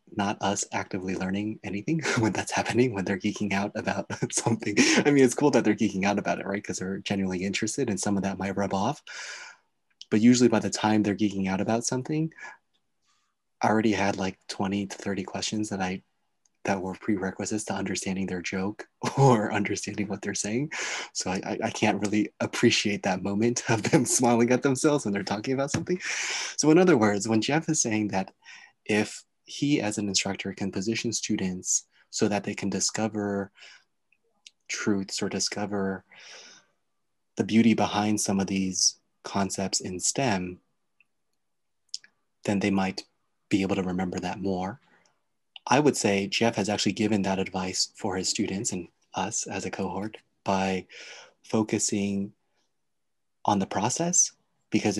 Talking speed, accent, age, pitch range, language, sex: 165 wpm, American, 20-39, 95-115 Hz, English, male